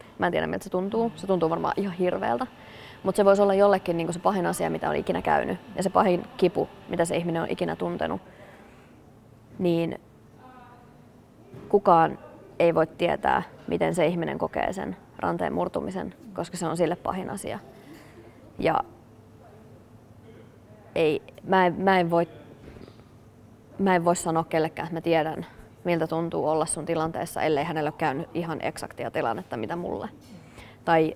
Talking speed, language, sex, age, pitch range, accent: 145 wpm, Finnish, female, 20-39, 115-180 Hz, native